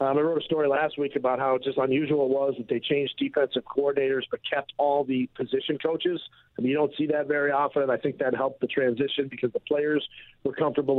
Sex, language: male, English